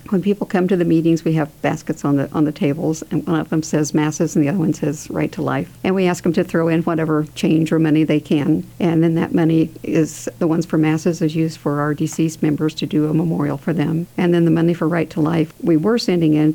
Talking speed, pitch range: 270 wpm, 155-170 Hz